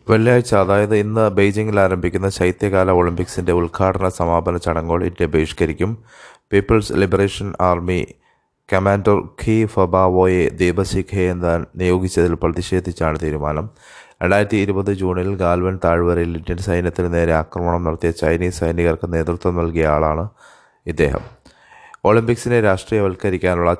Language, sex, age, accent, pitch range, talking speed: Malayalam, male, 20-39, native, 85-95 Hz, 95 wpm